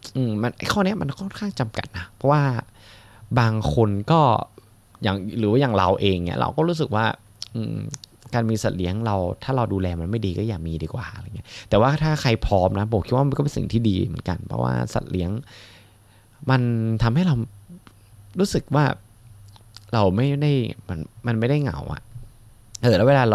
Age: 20-39